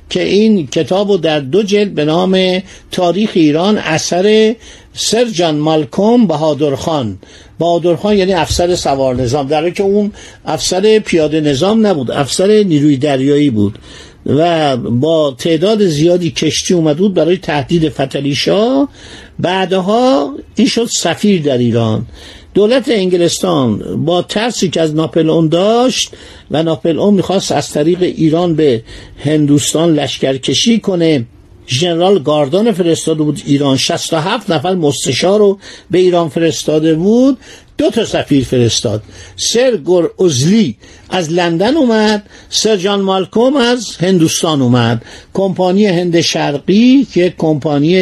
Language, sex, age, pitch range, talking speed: Persian, male, 50-69, 150-205 Hz, 125 wpm